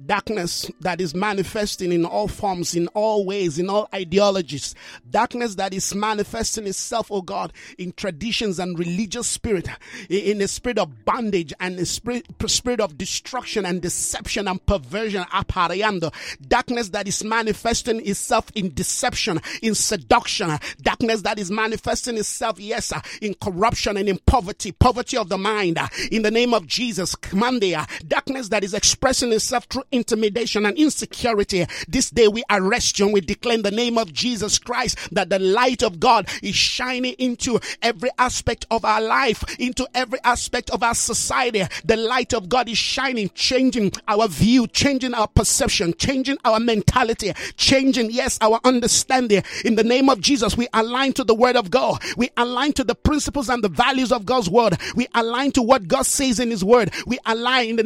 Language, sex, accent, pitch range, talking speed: English, male, Nigerian, 200-245 Hz, 170 wpm